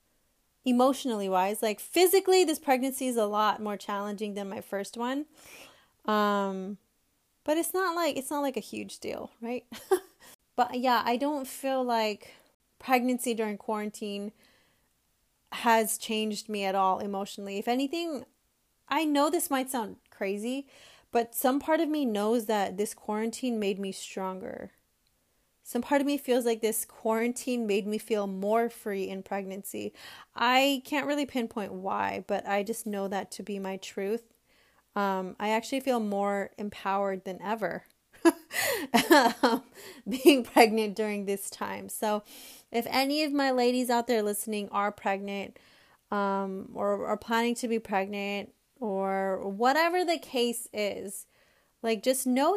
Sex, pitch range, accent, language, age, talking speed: female, 205-260 Hz, American, English, 20-39, 150 wpm